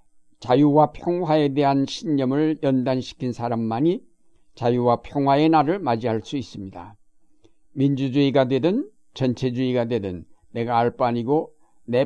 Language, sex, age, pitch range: Korean, male, 60-79, 120-150 Hz